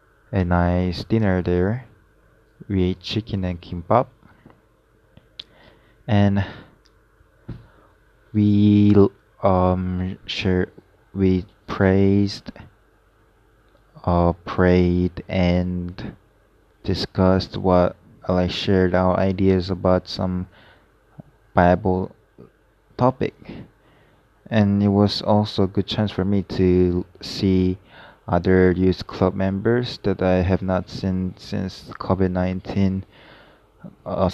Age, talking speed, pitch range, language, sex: 20-39, 90 wpm, 90-105 Hz, English, male